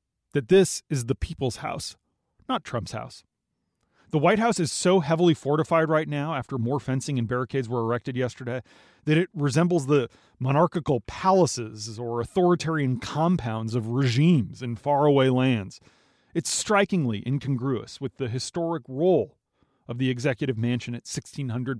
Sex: male